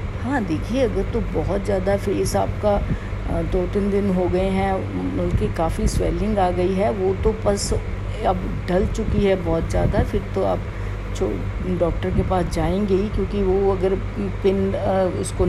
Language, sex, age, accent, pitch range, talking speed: Hindi, female, 50-69, native, 95-105 Hz, 165 wpm